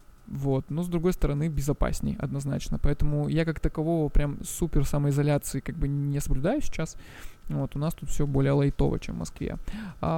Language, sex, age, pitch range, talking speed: Russian, male, 20-39, 140-165 Hz, 175 wpm